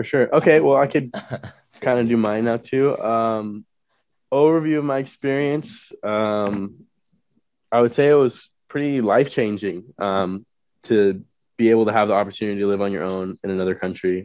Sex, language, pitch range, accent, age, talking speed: male, English, 95-120 Hz, American, 20-39, 170 wpm